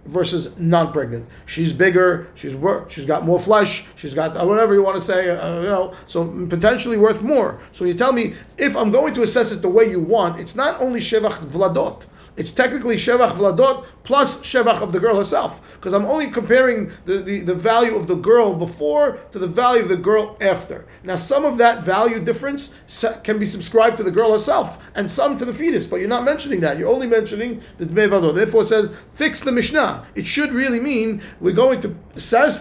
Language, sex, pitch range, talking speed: English, male, 180-235 Hz, 215 wpm